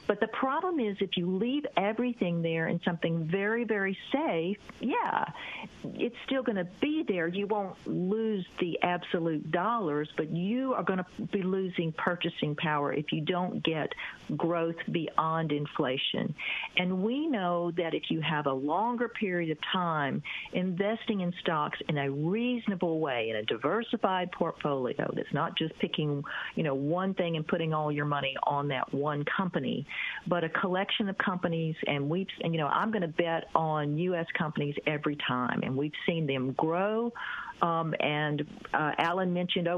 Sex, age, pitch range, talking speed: female, 50-69, 155-200 Hz, 170 wpm